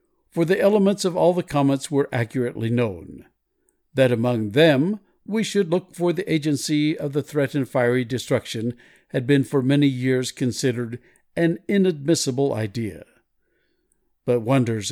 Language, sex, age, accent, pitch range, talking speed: English, male, 60-79, American, 125-165 Hz, 140 wpm